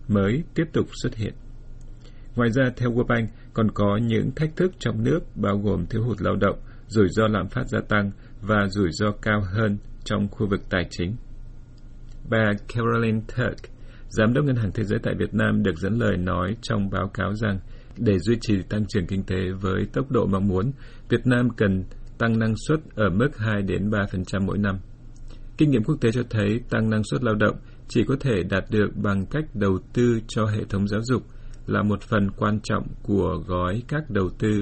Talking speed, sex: 205 wpm, male